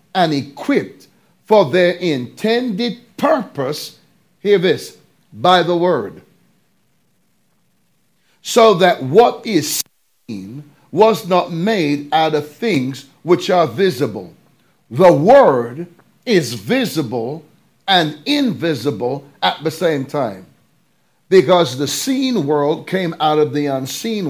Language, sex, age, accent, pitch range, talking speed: English, male, 60-79, American, 150-195 Hz, 110 wpm